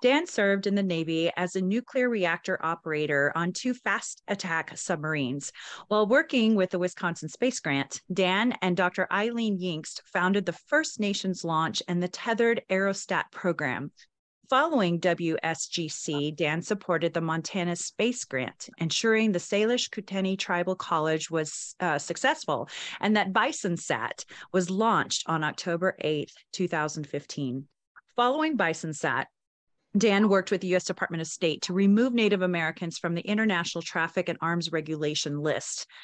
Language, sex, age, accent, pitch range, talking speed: English, female, 30-49, American, 165-215 Hz, 140 wpm